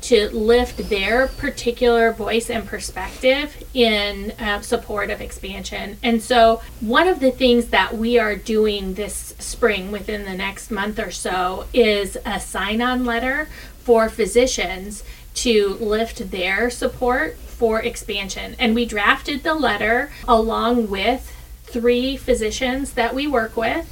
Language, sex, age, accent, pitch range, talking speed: English, female, 40-59, American, 210-240 Hz, 140 wpm